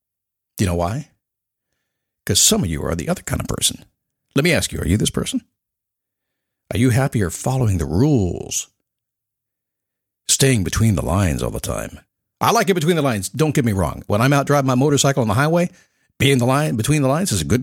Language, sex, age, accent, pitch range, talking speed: English, male, 60-79, American, 95-140 Hz, 210 wpm